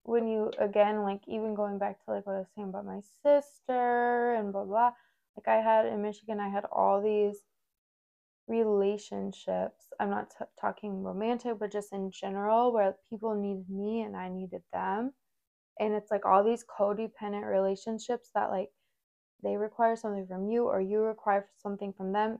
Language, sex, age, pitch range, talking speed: English, female, 20-39, 195-225 Hz, 175 wpm